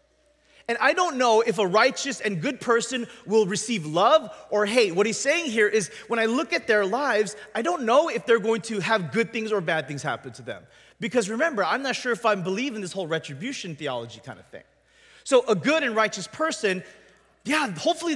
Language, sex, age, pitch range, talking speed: English, male, 30-49, 180-250 Hz, 220 wpm